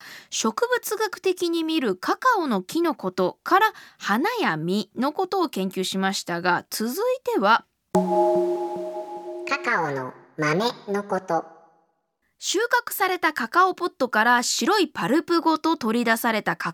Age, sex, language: 20-39, female, Japanese